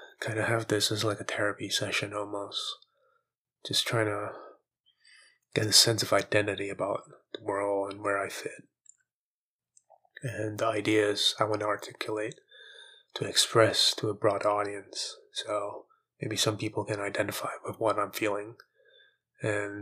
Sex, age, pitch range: male, 20-39, 100-140 Hz